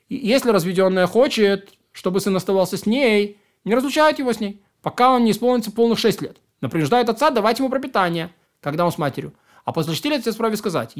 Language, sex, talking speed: Russian, male, 195 wpm